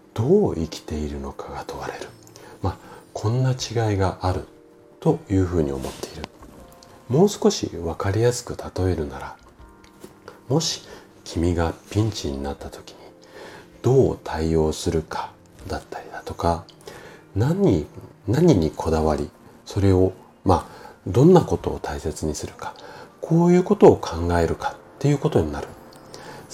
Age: 40-59